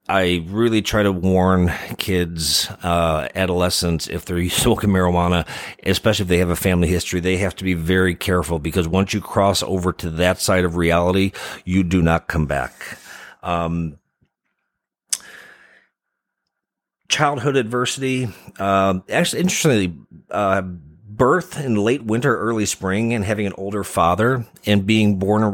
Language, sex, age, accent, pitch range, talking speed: English, male, 40-59, American, 90-110 Hz, 145 wpm